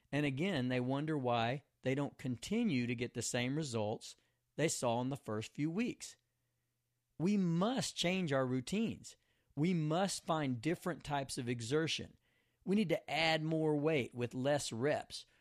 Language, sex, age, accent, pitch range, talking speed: English, male, 40-59, American, 120-170 Hz, 160 wpm